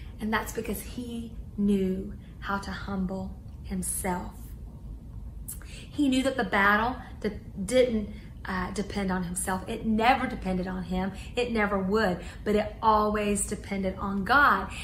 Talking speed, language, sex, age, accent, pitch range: 135 wpm, English, female, 30-49, American, 210-280 Hz